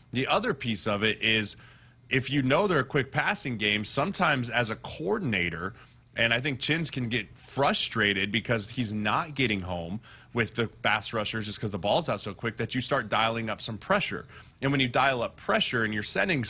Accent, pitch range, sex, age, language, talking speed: American, 110-135 Hz, male, 30-49, English, 205 wpm